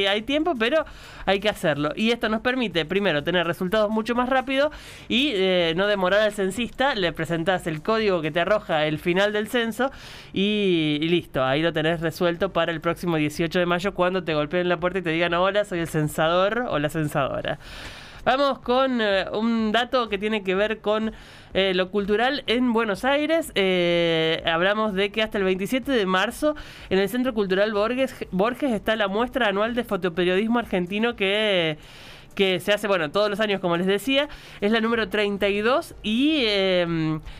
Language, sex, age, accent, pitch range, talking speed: Spanish, male, 20-39, Argentinian, 175-225 Hz, 190 wpm